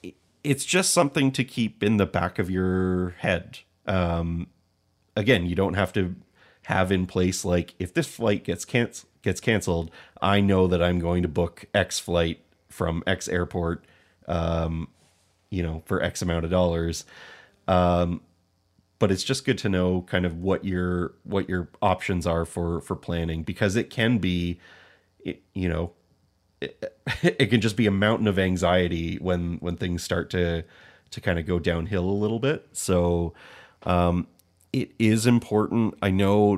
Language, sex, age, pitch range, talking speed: English, male, 30-49, 85-100 Hz, 165 wpm